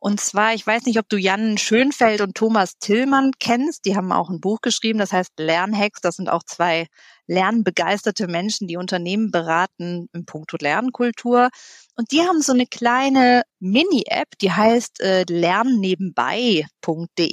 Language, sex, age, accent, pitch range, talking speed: German, female, 40-59, German, 190-235 Hz, 160 wpm